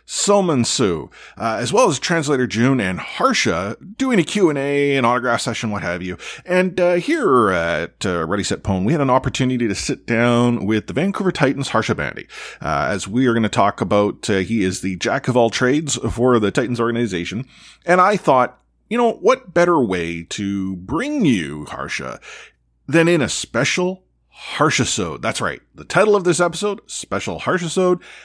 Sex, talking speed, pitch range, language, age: male, 185 wpm, 110-160 Hz, English, 30-49